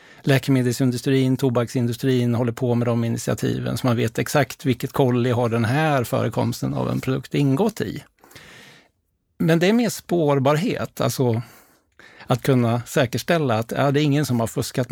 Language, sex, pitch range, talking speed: Swedish, male, 120-150 Hz, 155 wpm